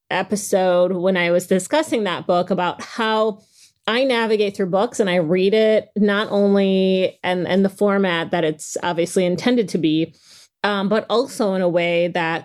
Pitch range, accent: 180-220 Hz, American